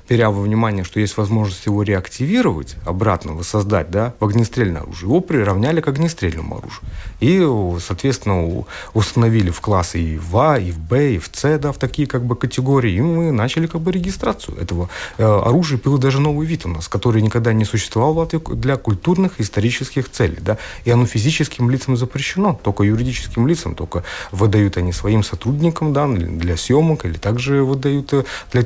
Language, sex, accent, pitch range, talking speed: Russian, male, native, 100-140 Hz, 175 wpm